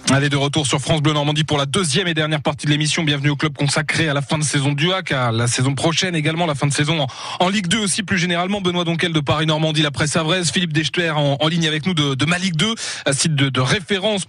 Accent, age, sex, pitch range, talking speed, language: French, 20-39, male, 155-200 Hz, 280 wpm, French